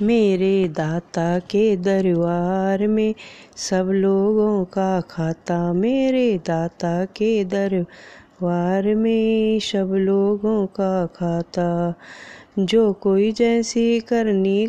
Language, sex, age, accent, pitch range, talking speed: Hindi, female, 20-39, native, 185-230 Hz, 90 wpm